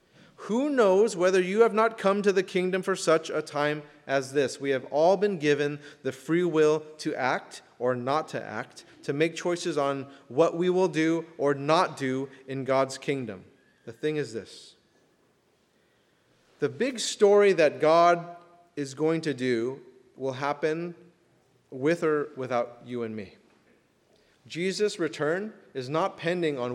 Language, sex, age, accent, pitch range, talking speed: English, male, 30-49, American, 130-180 Hz, 160 wpm